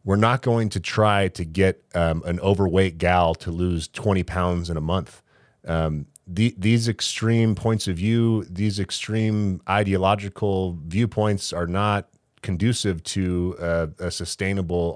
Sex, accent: male, American